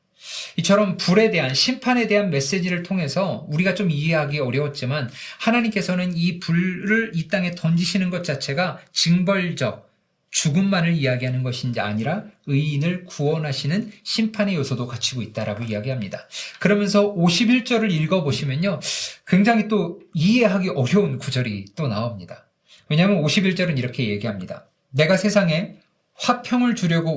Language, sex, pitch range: Korean, male, 140-200 Hz